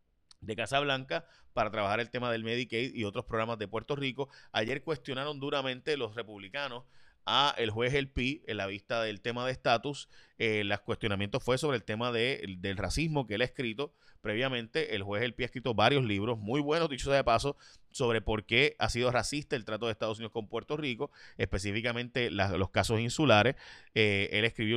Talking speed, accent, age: 200 wpm, Venezuelan, 30-49